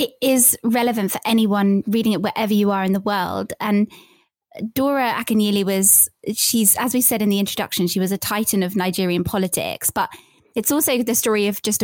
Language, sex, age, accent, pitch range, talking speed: English, female, 20-39, British, 195-235 Hz, 195 wpm